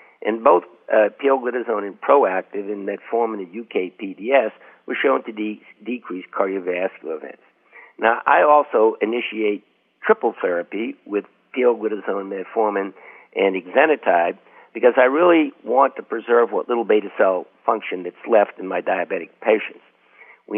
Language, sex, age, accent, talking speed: English, male, 60-79, American, 135 wpm